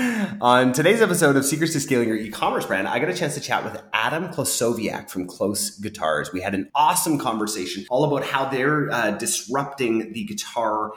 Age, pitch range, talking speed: 30-49, 100-140 Hz, 190 wpm